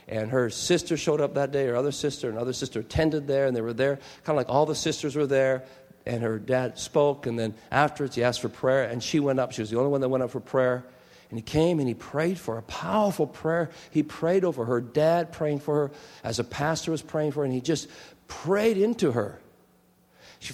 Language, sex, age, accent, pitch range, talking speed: English, male, 50-69, American, 120-175 Hz, 245 wpm